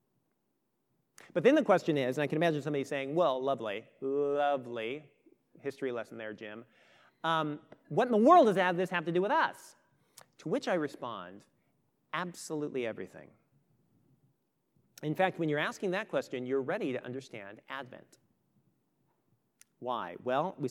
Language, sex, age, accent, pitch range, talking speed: English, male, 40-59, American, 145-190 Hz, 150 wpm